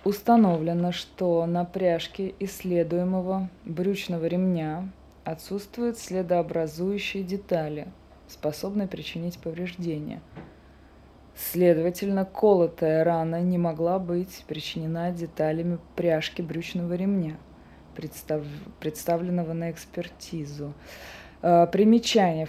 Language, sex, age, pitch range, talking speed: Russian, female, 20-39, 160-195 Hz, 75 wpm